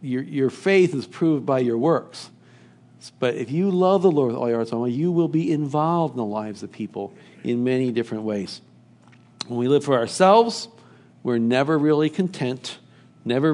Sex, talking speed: male, 185 wpm